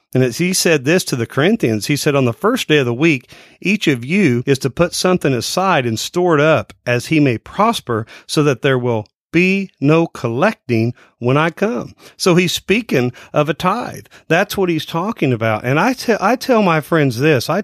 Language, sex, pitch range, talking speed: English, male, 125-165 Hz, 215 wpm